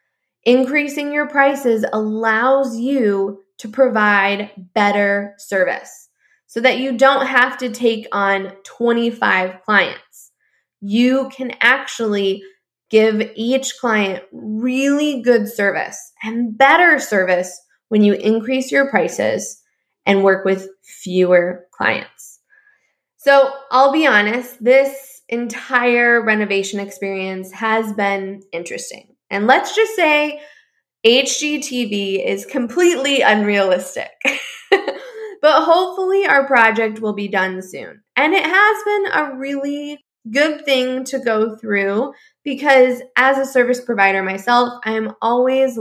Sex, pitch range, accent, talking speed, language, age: female, 200-270 Hz, American, 115 wpm, English, 10-29